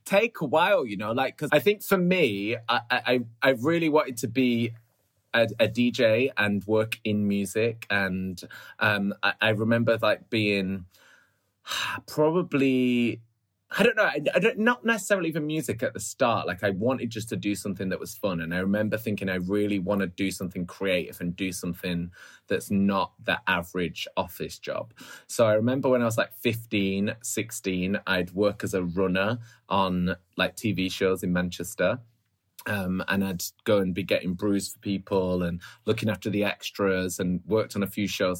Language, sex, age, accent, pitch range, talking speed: English, male, 20-39, British, 95-115 Hz, 180 wpm